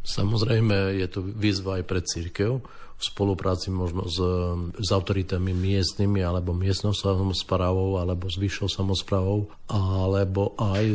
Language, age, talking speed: Slovak, 40-59, 125 wpm